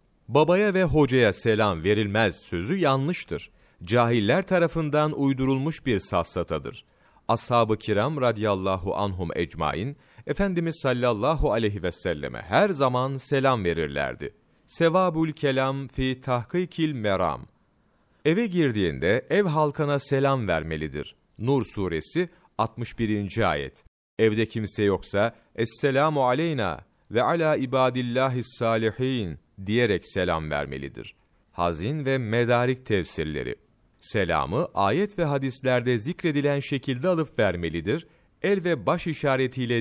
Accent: native